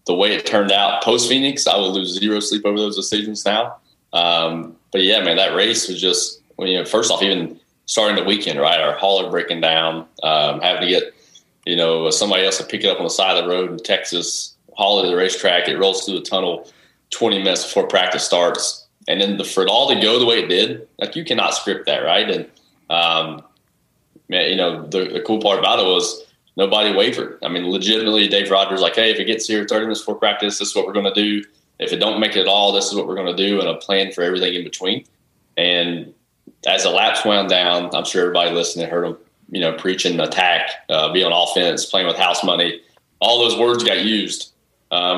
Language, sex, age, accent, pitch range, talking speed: English, male, 20-39, American, 90-105 Hz, 230 wpm